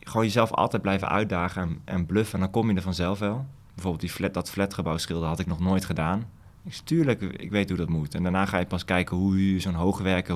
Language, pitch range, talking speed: Dutch, 90-105 Hz, 255 wpm